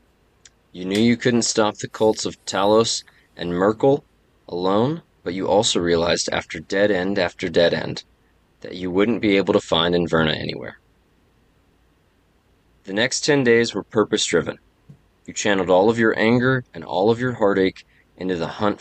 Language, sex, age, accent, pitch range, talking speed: English, male, 20-39, American, 90-115 Hz, 165 wpm